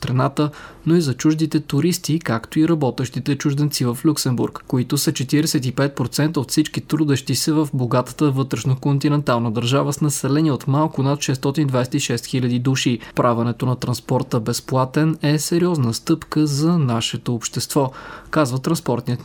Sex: male